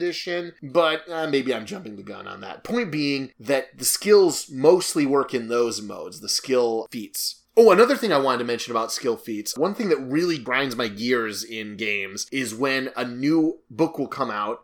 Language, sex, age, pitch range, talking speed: English, male, 30-49, 125-185 Hz, 200 wpm